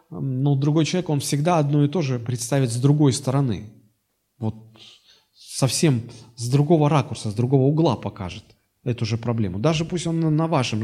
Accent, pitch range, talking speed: native, 115-155 Hz, 165 wpm